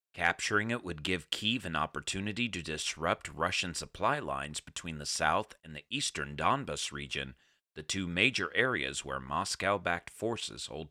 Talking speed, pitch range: 155 wpm, 80-120 Hz